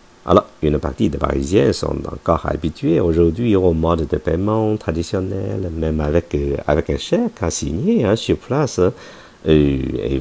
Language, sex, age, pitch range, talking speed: French, male, 50-69, 75-100 Hz, 160 wpm